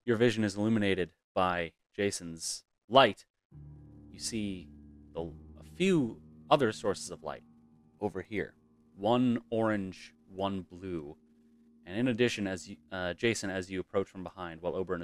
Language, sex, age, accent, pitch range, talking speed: English, male, 30-49, American, 90-115 Hz, 145 wpm